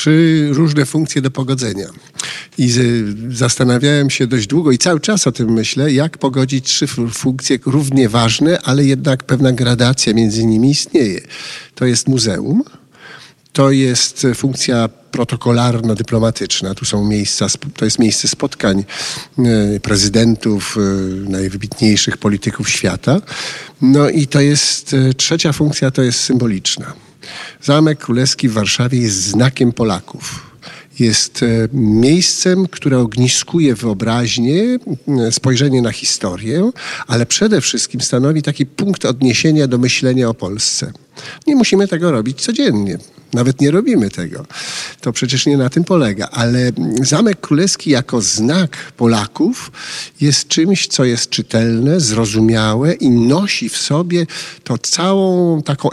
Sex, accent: male, native